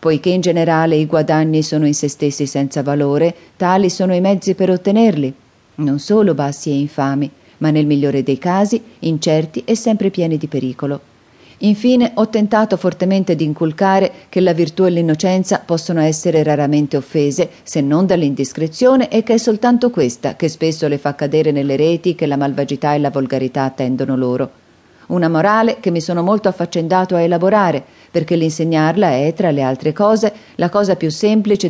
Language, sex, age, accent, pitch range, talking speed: Italian, female, 40-59, native, 145-185 Hz, 170 wpm